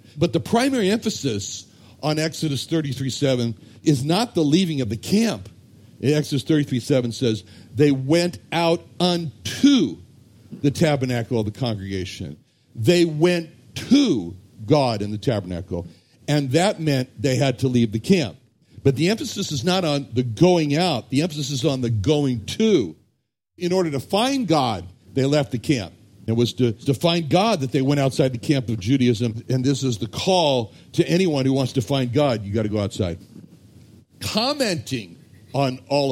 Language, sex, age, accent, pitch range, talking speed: English, male, 60-79, American, 115-165 Hz, 170 wpm